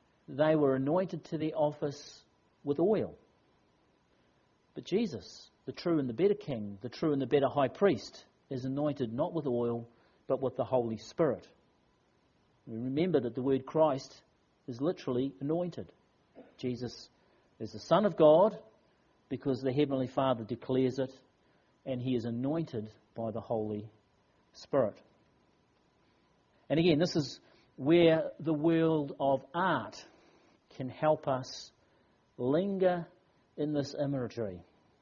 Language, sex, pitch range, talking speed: English, male, 130-160 Hz, 135 wpm